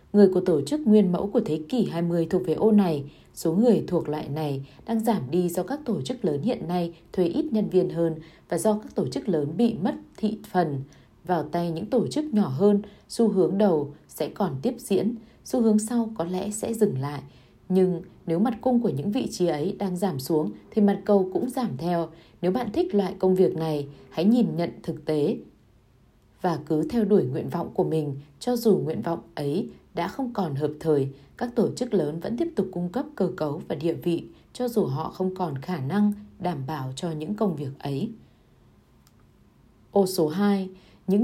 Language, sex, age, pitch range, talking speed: Vietnamese, female, 20-39, 160-210 Hz, 210 wpm